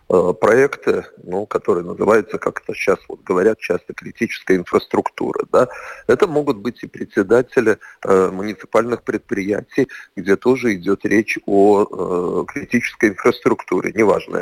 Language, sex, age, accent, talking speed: Russian, male, 40-59, native, 125 wpm